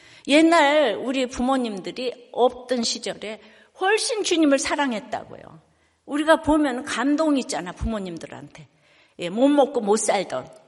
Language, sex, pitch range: Korean, female, 255-330 Hz